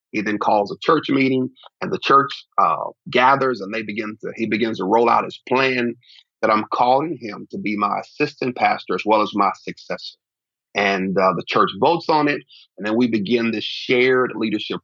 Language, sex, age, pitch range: English, male, 40-59, 105-130 Hz